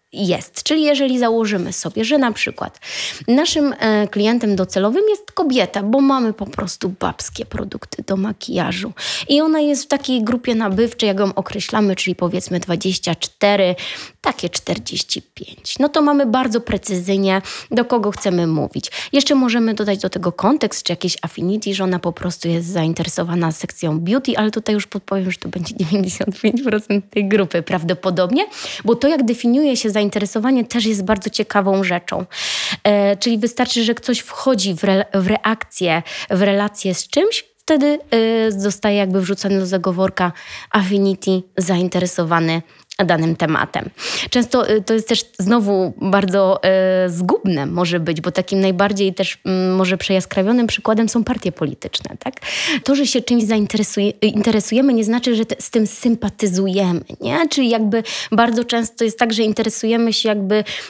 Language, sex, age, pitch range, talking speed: Polish, female, 20-39, 190-235 Hz, 150 wpm